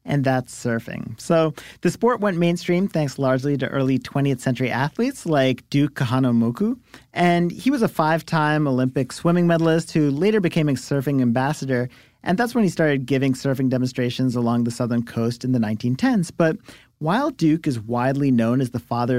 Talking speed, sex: 175 wpm, male